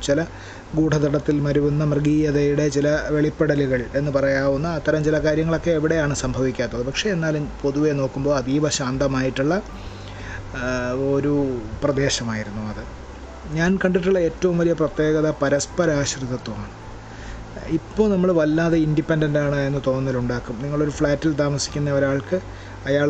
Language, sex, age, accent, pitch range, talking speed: Malayalam, male, 30-49, native, 120-150 Hz, 100 wpm